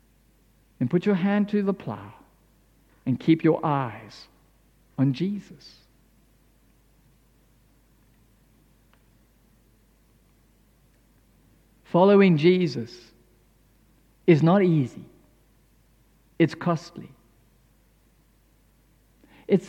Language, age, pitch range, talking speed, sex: English, 50-69, 130-195 Hz, 65 wpm, male